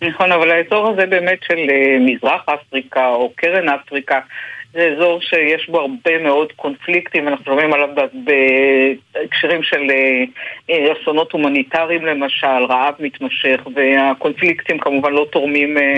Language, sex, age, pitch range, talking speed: Hebrew, female, 50-69, 140-170 Hz, 120 wpm